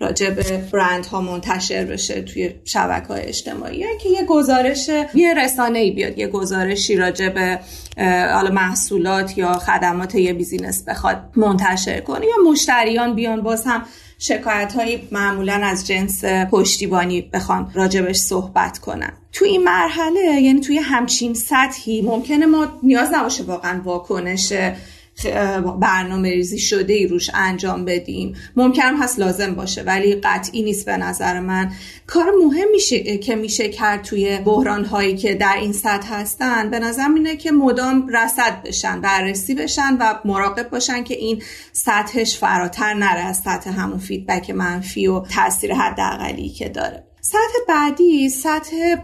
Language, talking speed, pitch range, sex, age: Persian, 140 wpm, 190-260 Hz, female, 30-49